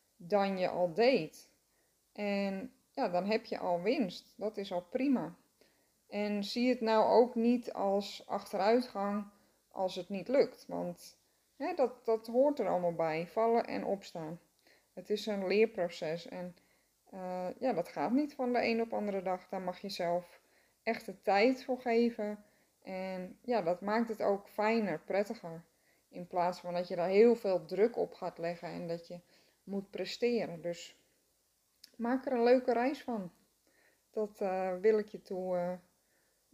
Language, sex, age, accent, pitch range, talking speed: Dutch, female, 20-39, Dutch, 180-235 Hz, 165 wpm